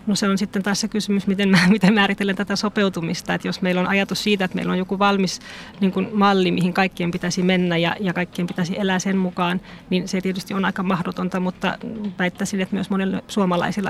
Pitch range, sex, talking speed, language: 185-200 Hz, female, 215 wpm, Finnish